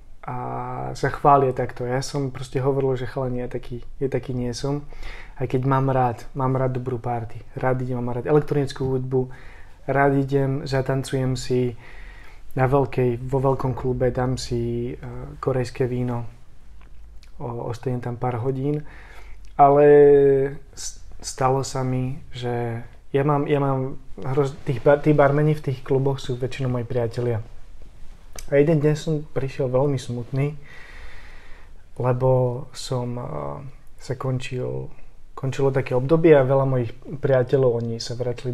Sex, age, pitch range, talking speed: male, 20-39, 120-135 Hz, 135 wpm